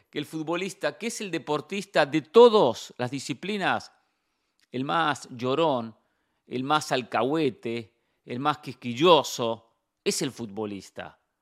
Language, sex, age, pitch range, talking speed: English, male, 40-59, 150-200 Hz, 115 wpm